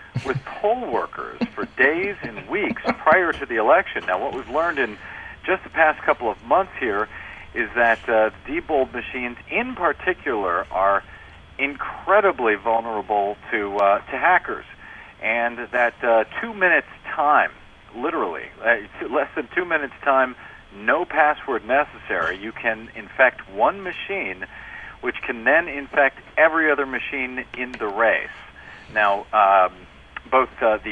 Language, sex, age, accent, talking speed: English, male, 50-69, American, 140 wpm